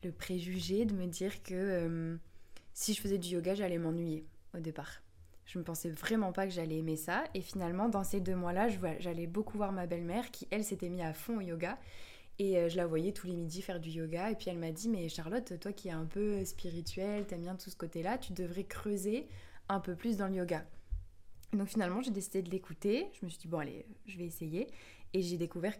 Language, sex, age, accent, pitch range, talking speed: French, female, 20-39, French, 170-200 Hz, 240 wpm